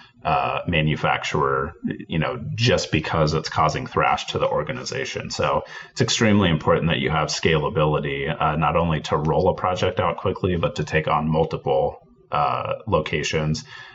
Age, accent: 30-49, American